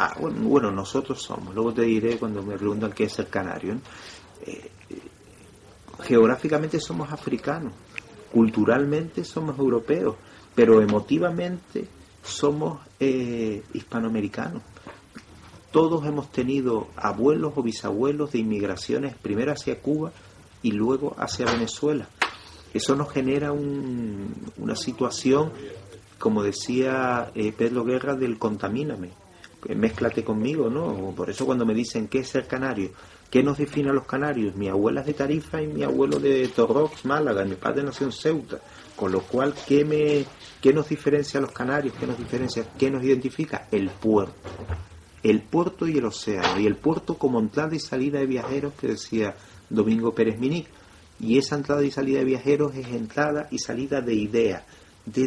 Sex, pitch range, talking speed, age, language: male, 105-140 Hz, 155 wpm, 40-59, Spanish